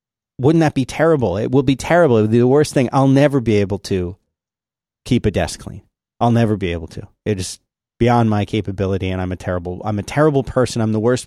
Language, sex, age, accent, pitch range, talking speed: English, male, 30-49, American, 105-140 Hz, 235 wpm